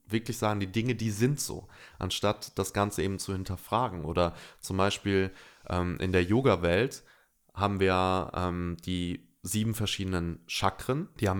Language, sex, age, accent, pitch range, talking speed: German, male, 20-39, German, 90-110 Hz, 155 wpm